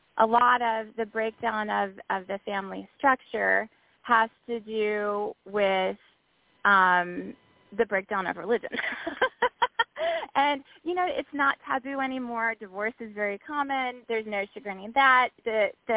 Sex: female